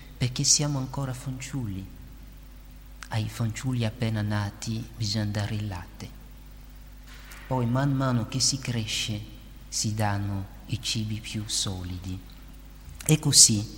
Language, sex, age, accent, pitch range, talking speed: Italian, male, 50-69, native, 105-130 Hz, 115 wpm